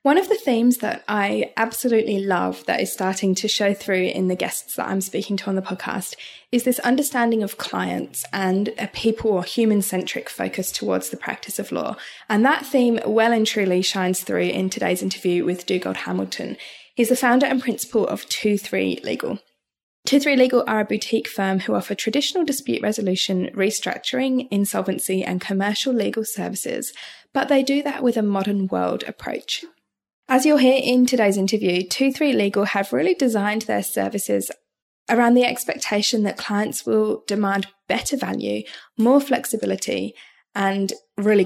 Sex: female